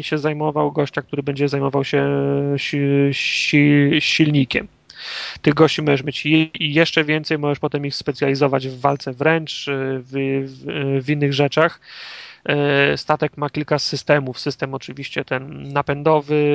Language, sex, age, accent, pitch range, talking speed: Polish, male, 30-49, native, 140-155 Hz, 120 wpm